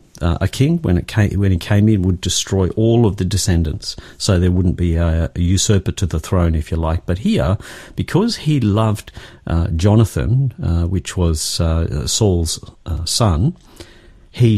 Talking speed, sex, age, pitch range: 180 wpm, male, 50-69, 85-110 Hz